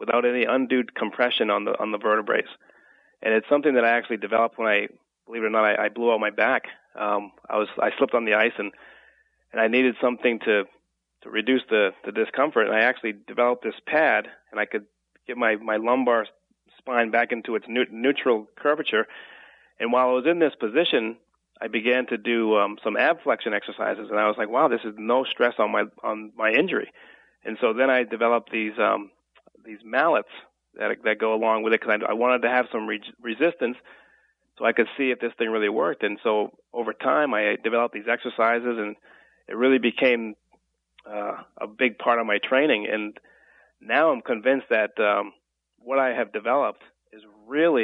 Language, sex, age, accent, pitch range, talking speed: English, male, 30-49, American, 110-125 Hz, 200 wpm